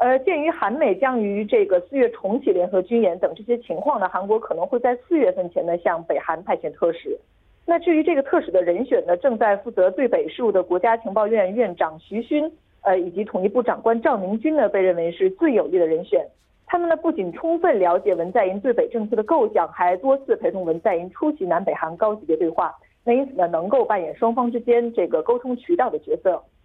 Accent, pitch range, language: Chinese, 185-315 Hz, Korean